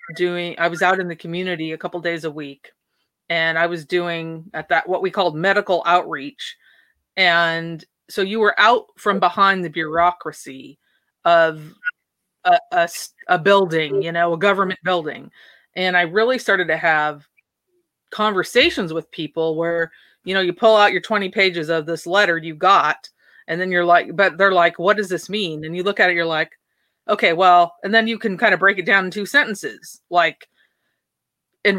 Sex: female